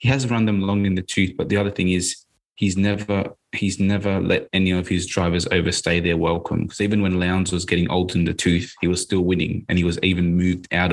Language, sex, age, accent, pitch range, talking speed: English, male, 20-39, Australian, 90-100 Hz, 245 wpm